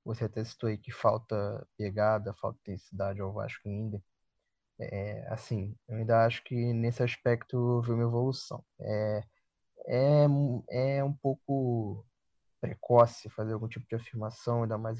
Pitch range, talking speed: 110-130 Hz, 145 wpm